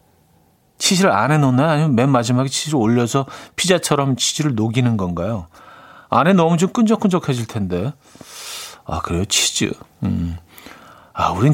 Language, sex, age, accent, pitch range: Korean, male, 40-59, native, 115-160 Hz